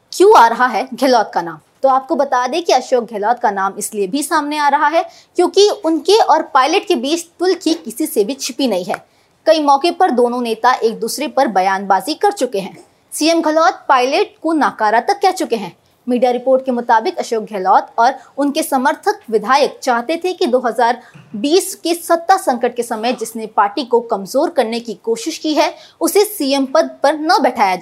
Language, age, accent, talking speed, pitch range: Hindi, 20-39, native, 195 wpm, 230-330 Hz